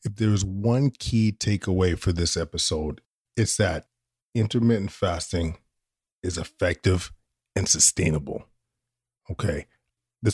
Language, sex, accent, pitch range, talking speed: English, male, American, 90-115 Hz, 105 wpm